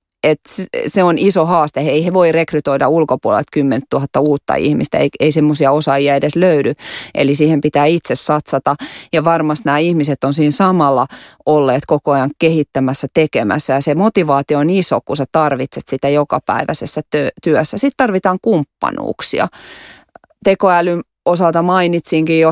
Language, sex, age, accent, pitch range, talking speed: Finnish, female, 30-49, native, 150-175 Hz, 150 wpm